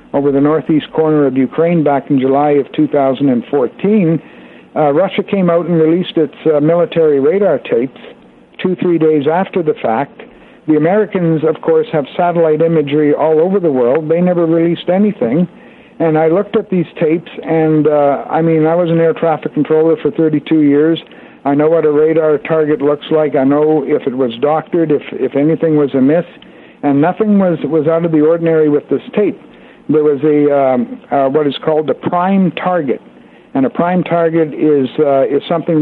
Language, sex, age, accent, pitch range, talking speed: English, male, 60-79, American, 145-165 Hz, 185 wpm